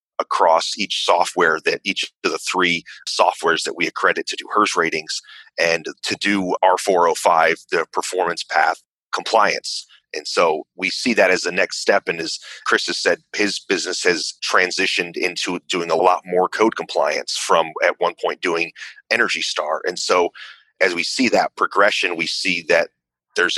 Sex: male